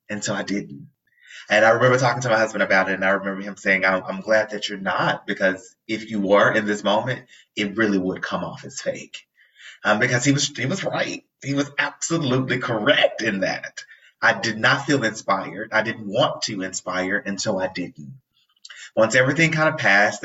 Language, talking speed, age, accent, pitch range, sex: English, 200 wpm, 20-39, American, 95-125 Hz, male